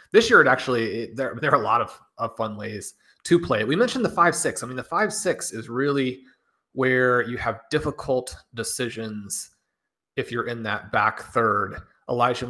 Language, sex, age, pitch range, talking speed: English, male, 30-49, 110-135 Hz, 190 wpm